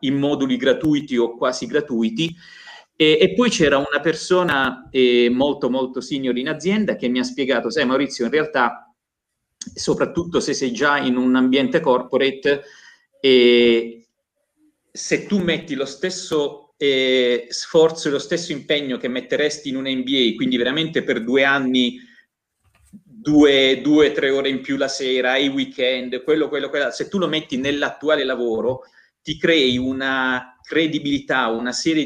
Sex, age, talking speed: male, 40-59, 150 wpm